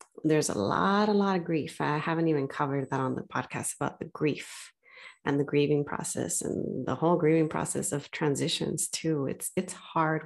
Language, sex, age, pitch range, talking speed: English, female, 30-49, 145-200 Hz, 195 wpm